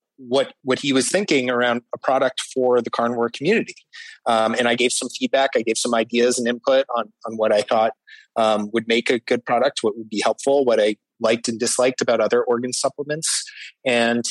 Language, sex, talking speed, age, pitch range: English, male, 205 wpm, 30-49, 120-135 Hz